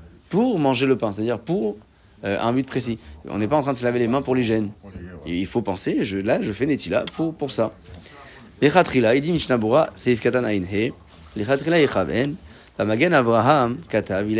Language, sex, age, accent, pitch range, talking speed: French, male, 30-49, French, 105-135 Hz, 215 wpm